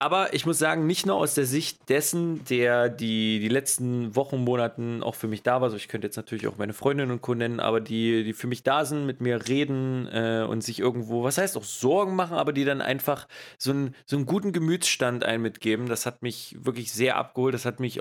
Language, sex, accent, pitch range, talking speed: German, male, German, 110-135 Hz, 235 wpm